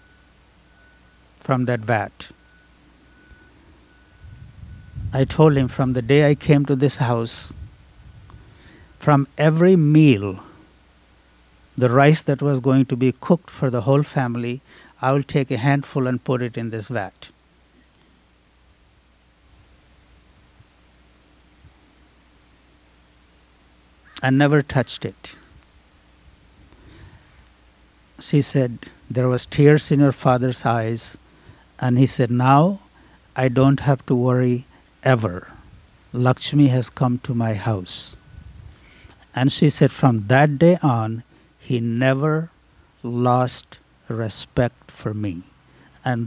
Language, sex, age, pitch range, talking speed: English, male, 60-79, 90-135 Hz, 110 wpm